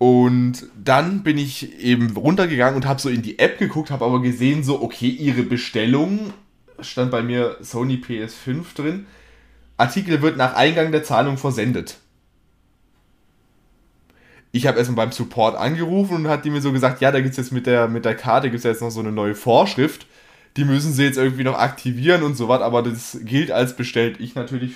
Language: German